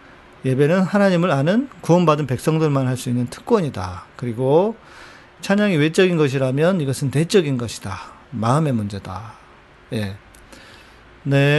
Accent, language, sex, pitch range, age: native, Korean, male, 115-165 Hz, 40-59